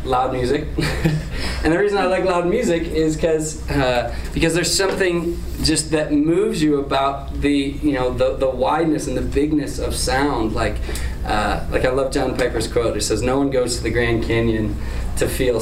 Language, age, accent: English, 20-39, American